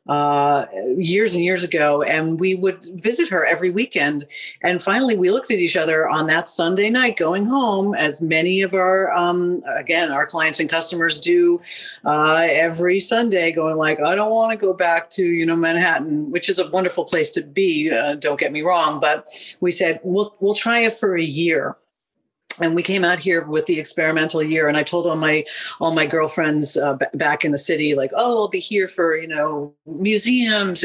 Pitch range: 155-190 Hz